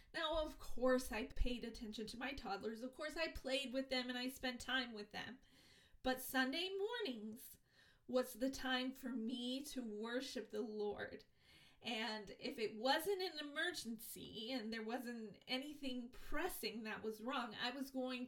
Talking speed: 165 wpm